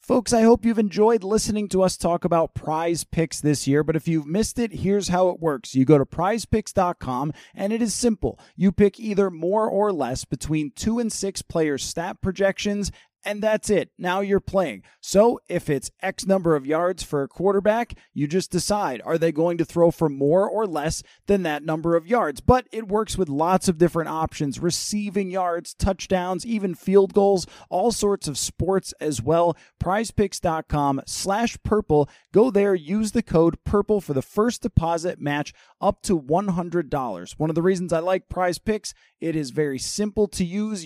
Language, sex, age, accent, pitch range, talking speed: English, male, 30-49, American, 155-205 Hz, 185 wpm